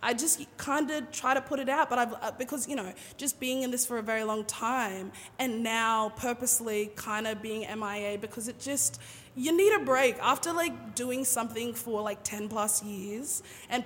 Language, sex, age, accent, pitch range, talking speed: English, female, 20-39, Australian, 215-255 Hz, 205 wpm